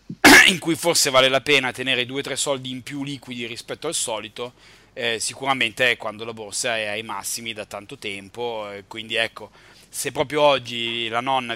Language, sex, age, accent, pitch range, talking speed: Italian, male, 30-49, native, 115-135 Hz, 180 wpm